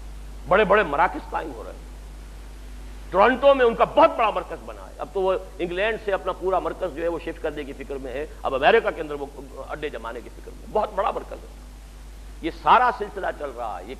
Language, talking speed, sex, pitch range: Urdu, 230 wpm, male, 140-220 Hz